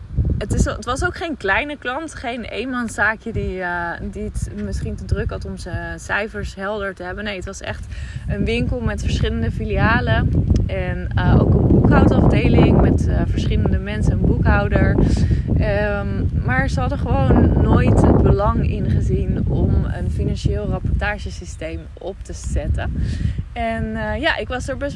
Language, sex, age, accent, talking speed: English, female, 20-39, Dutch, 155 wpm